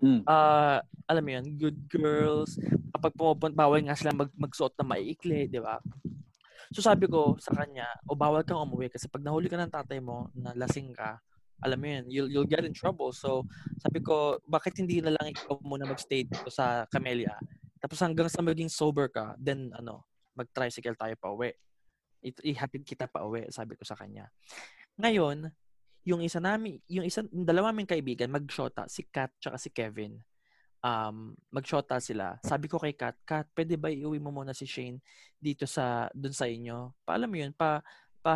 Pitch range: 125-170 Hz